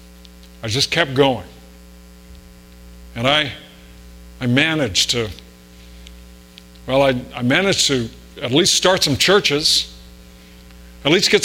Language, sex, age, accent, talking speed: English, male, 50-69, American, 115 wpm